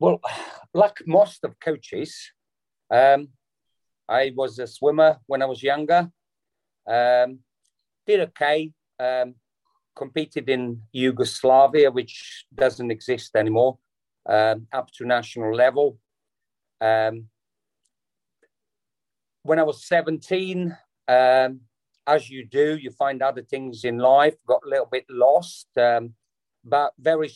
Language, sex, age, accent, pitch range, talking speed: English, male, 50-69, British, 120-140 Hz, 115 wpm